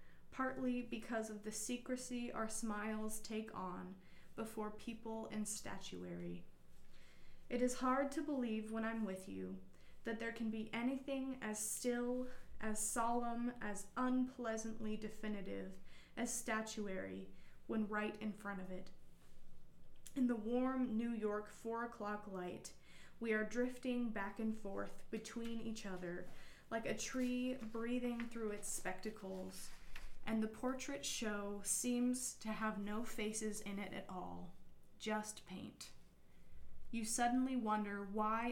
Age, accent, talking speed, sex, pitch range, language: 20-39, American, 130 wpm, female, 195-235 Hz, English